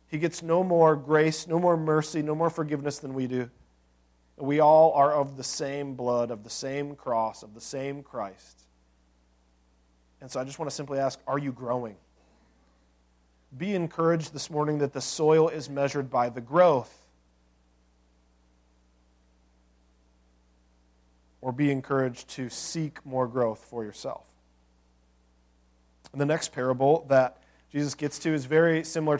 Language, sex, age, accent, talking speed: English, male, 40-59, American, 150 wpm